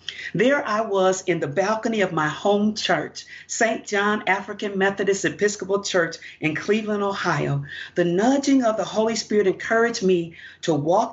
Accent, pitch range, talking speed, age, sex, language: American, 185-230 Hz, 155 wpm, 40-59, female, English